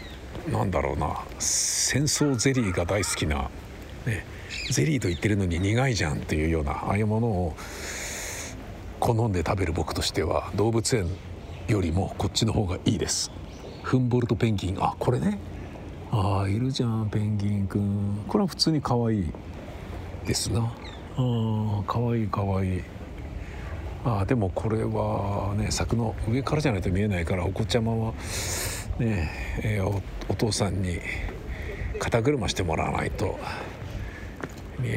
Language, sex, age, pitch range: Japanese, male, 50-69, 90-115 Hz